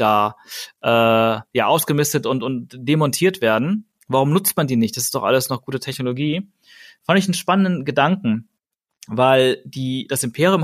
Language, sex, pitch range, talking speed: German, male, 125-155 Hz, 165 wpm